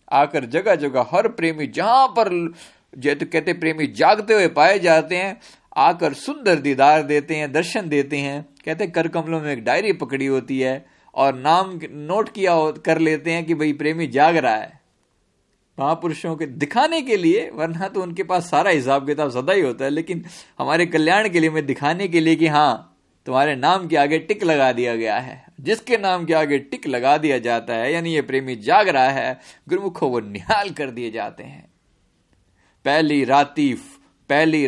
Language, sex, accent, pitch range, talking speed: Hindi, male, native, 135-190 Hz, 180 wpm